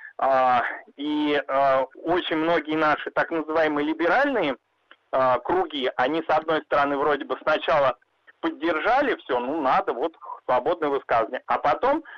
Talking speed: 135 wpm